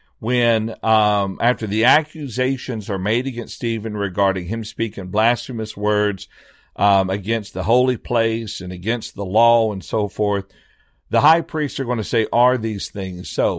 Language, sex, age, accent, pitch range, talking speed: English, male, 60-79, American, 100-145 Hz, 165 wpm